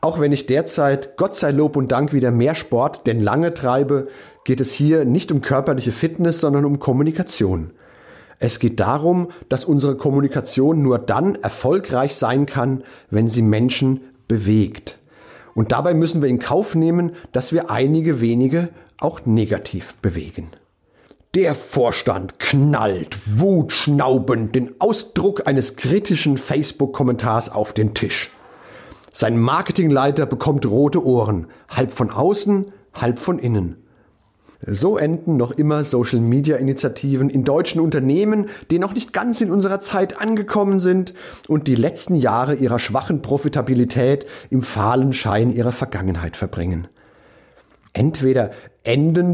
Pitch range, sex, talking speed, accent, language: 125-160 Hz, male, 135 wpm, German, German